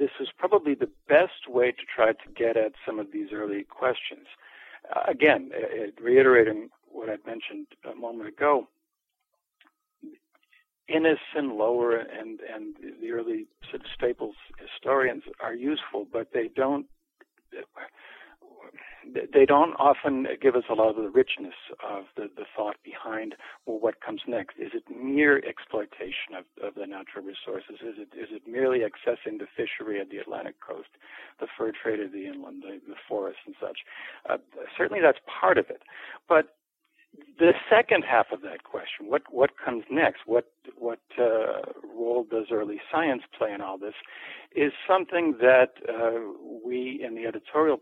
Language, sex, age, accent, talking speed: English, male, 60-79, American, 160 wpm